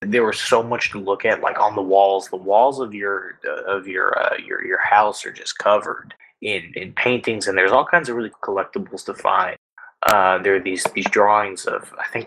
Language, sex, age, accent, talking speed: English, male, 20-39, American, 225 wpm